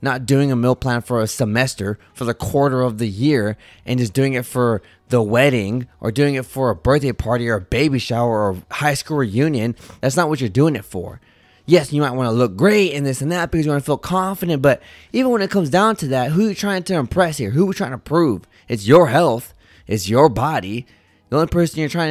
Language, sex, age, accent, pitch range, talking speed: English, male, 20-39, American, 115-160 Hz, 250 wpm